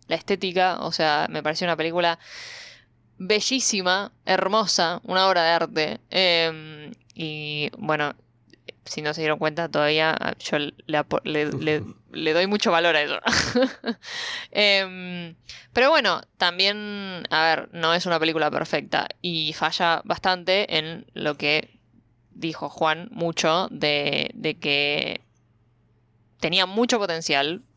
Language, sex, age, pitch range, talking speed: Spanish, female, 20-39, 150-190 Hz, 120 wpm